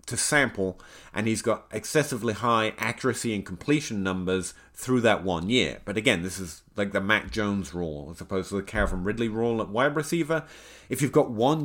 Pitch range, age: 95-125 Hz, 30-49